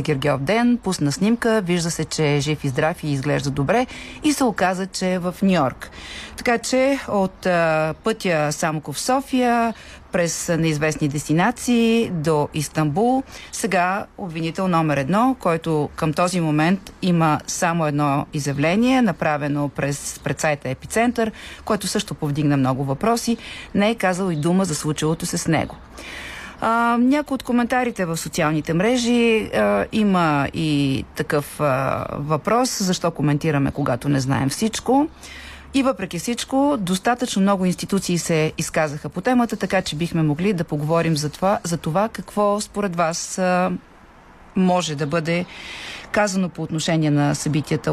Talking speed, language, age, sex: 145 wpm, Bulgarian, 40-59, female